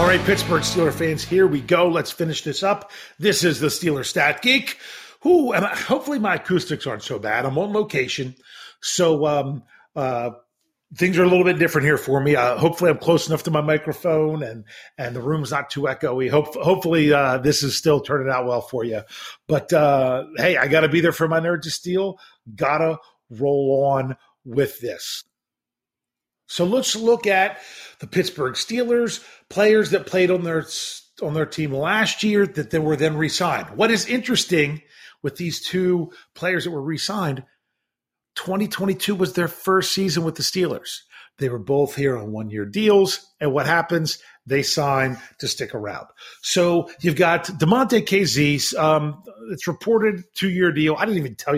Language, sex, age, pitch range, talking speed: English, male, 40-59, 140-185 Hz, 180 wpm